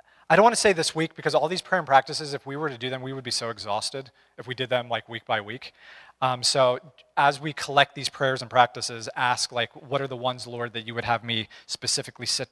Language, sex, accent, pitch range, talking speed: English, male, American, 120-150 Hz, 265 wpm